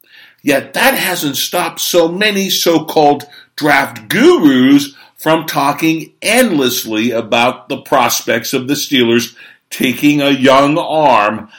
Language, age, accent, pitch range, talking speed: English, 50-69, American, 120-160 Hz, 115 wpm